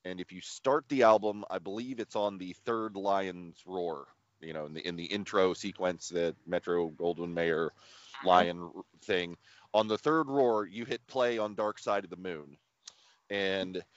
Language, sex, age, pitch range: English, male, 30-49, 90-115 Hz